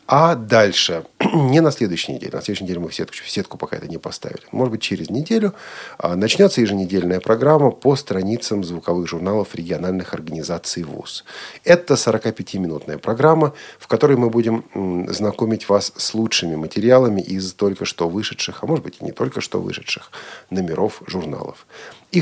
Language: Russian